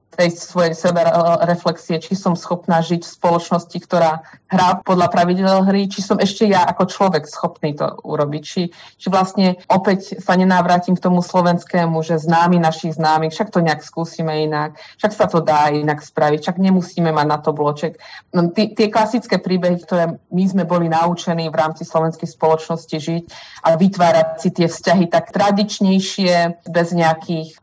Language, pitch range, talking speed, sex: Slovak, 160-185 Hz, 165 wpm, female